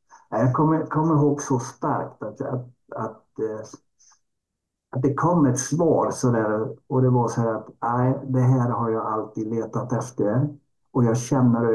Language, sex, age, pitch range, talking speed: Swedish, male, 60-79, 115-140 Hz, 170 wpm